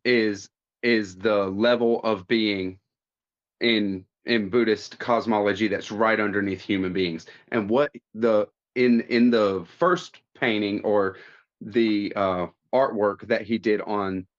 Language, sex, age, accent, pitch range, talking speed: English, male, 30-49, American, 100-120 Hz, 130 wpm